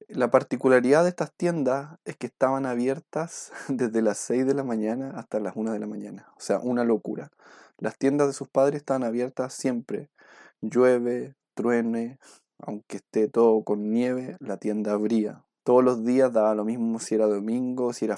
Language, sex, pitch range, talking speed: Spanish, male, 110-140 Hz, 180 wpm